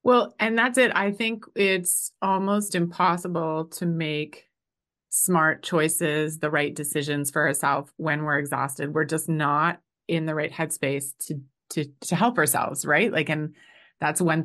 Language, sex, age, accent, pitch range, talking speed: English, female, 30-49, American, 145-190 Hz, 160 wpm